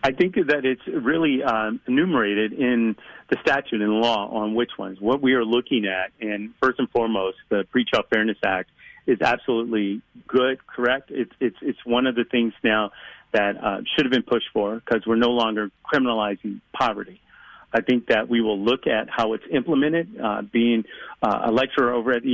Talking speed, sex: 195 wpm, male